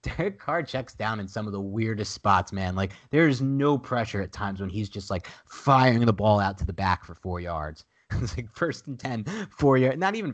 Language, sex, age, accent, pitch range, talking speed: English, male, 30-49, American, 100-125 Hz, 230 wpm